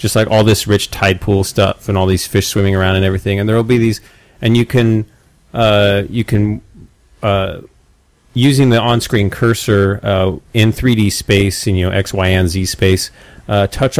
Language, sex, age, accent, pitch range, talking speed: English, male, 30-49, American, 95-115 Hz, 195 wpm